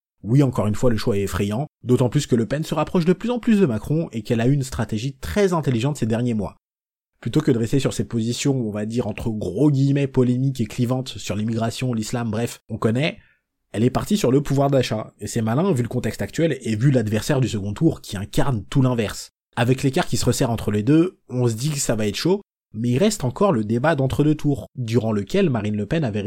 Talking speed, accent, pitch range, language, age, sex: 250 wpm, French, 110-140 Hz, French, 20-39, male